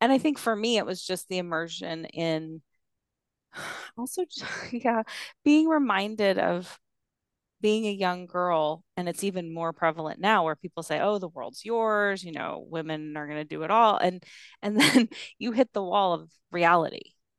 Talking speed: 180 wpm